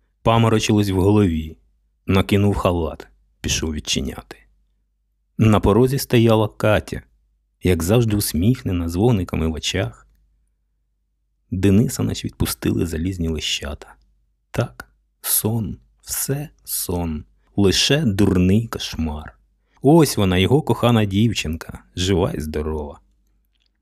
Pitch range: 80-115 Hz